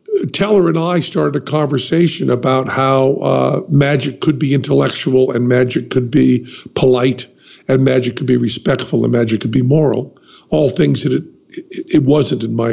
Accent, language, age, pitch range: American, English, 50-69, 125-150 Hz